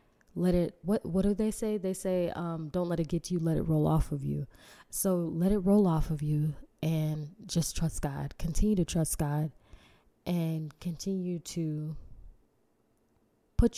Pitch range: 155-185 Hz